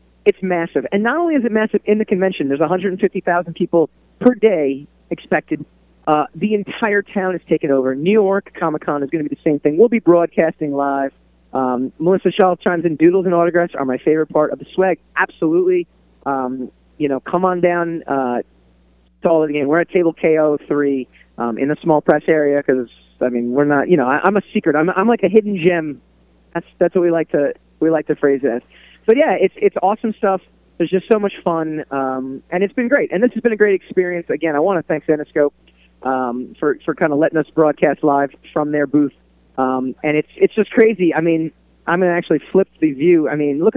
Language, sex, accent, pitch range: English, male, American, 145-195 Hz